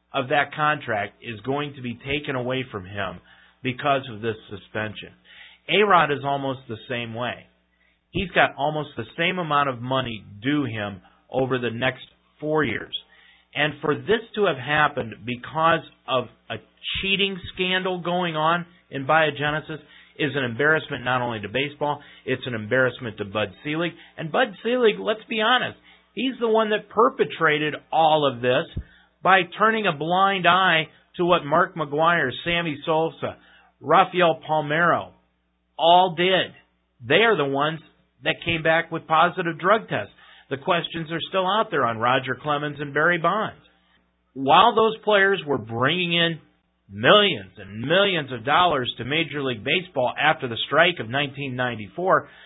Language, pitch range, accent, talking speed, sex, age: English, 125-170 Hz, American, 155 wpm, male, 40-59